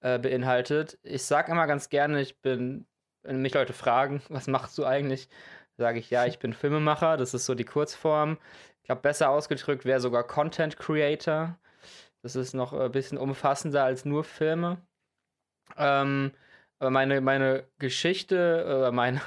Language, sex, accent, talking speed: German, male, German, 155 wpm